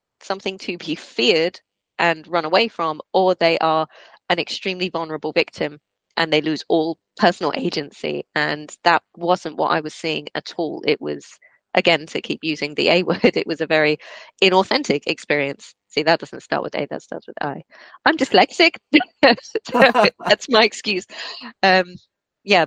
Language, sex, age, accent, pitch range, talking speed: English, female, 20-39, British, 155-185 Hz, 165 wpm